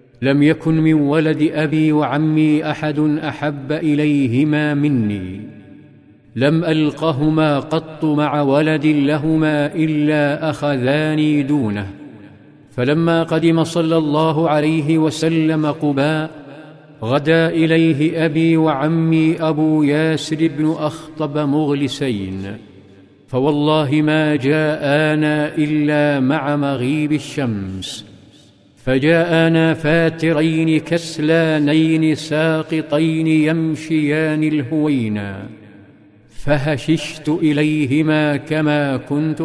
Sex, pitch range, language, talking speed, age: male, 145-155 Hz, Arabic, 80 wpm, 50-69